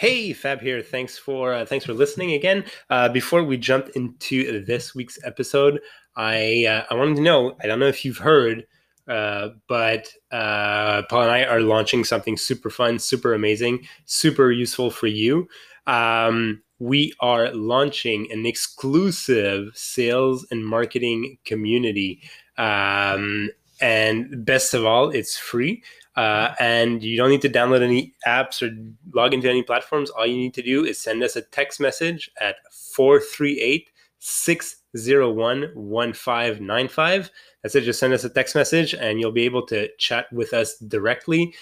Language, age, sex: English, 20-39, male